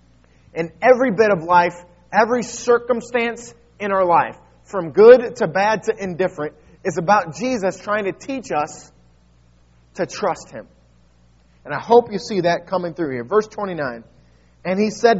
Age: 30-49